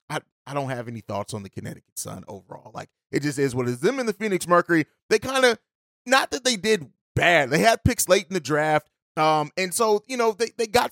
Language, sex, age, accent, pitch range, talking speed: English, male, 30-49, American, 150-190 Hz, 255 wpm